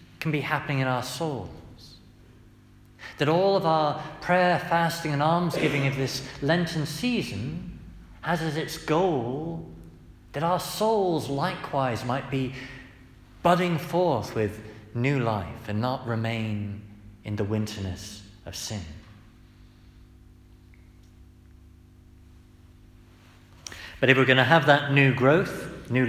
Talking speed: 115 wpm